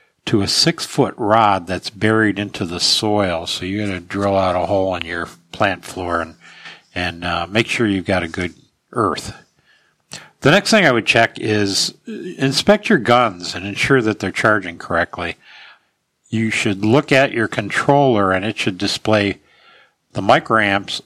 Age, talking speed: 60-79, 170 wpm